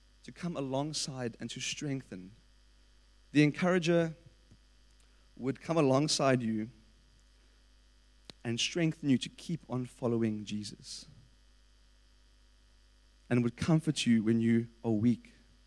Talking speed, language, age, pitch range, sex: 105 wpm, English, 30-49, 115-160 Hz, male